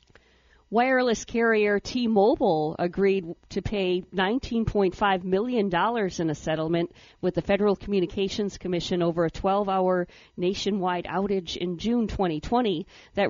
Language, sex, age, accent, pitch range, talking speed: English, female, 50-69, American, 175-210 Hz, 115 wpm